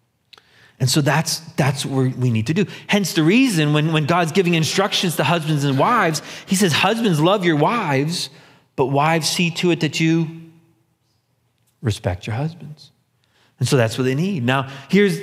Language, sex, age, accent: English, male, 30-49, American